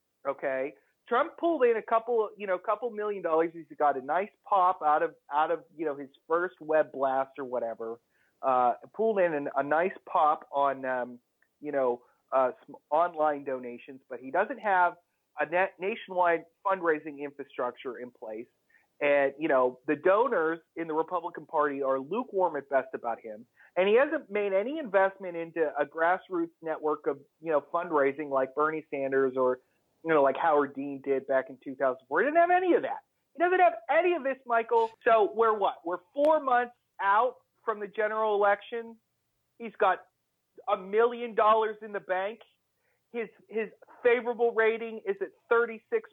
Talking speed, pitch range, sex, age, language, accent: 180 wpm, 150-230 Hz, male, 30-49, English, American